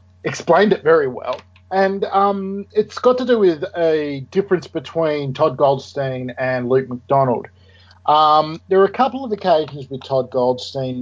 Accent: Australian